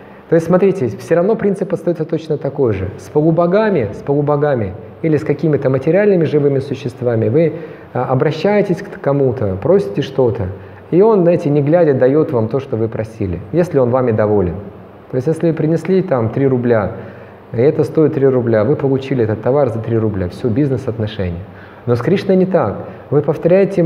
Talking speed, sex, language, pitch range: 175 wpm, male, Russian, 115-165 Hz